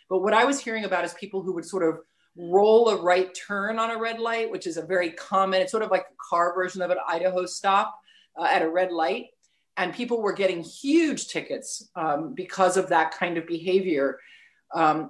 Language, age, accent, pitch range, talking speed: English, 40-59, American, 175-230 Hz, 220 wpm